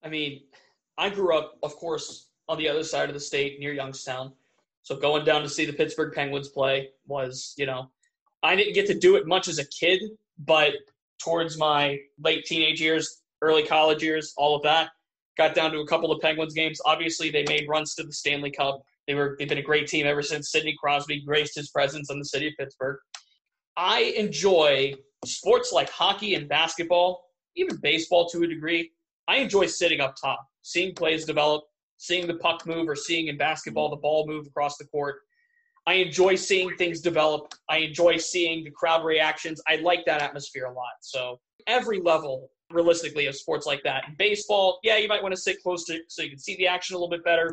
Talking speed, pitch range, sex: 205 wpm, 145-175 Hz, male